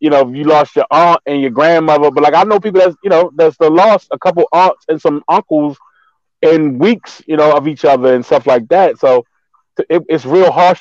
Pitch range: 150-210 Hz